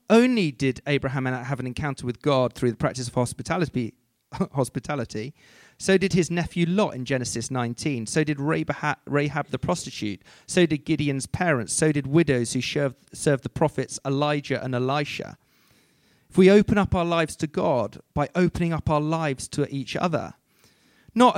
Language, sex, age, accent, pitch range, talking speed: English, male, 40-59, British, 135-180 Hz, 170 wpm